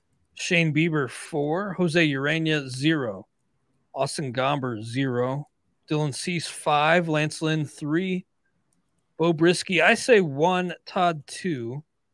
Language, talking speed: English, 110 wpm